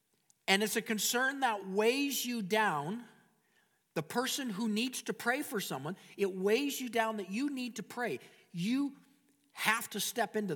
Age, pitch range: 50-69, 170-215 Hz